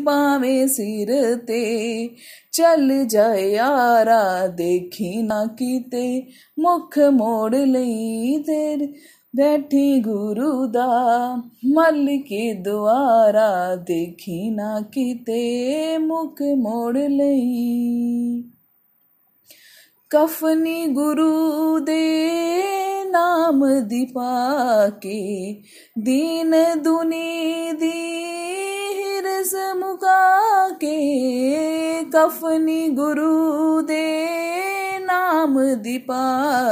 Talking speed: 60 wpm